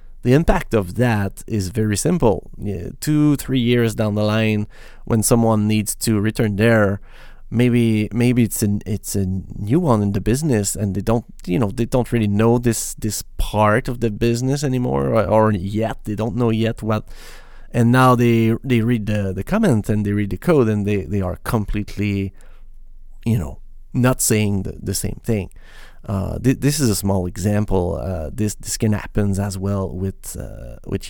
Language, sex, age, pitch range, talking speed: English, male, 30-49, 100-120 Hz, 185 wpm